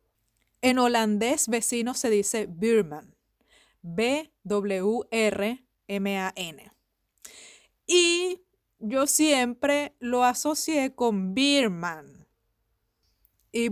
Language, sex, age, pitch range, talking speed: Spanish, female, 30-49, 195-260 Hz, 65 wpm